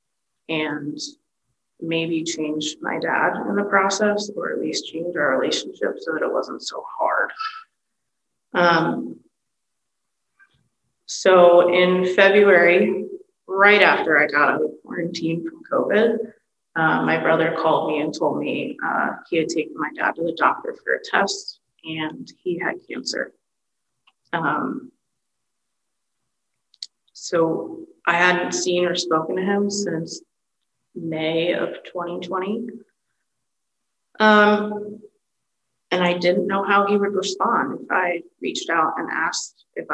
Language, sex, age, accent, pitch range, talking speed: English, female, 30-49, American, 165-210 Hz, 130 wpm